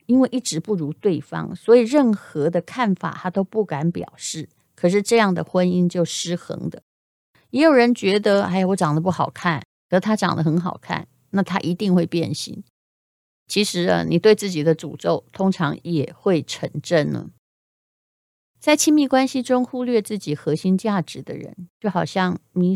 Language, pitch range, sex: Chinese, 160-215 Hz, female